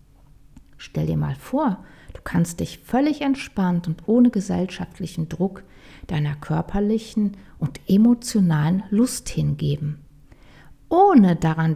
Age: 50-69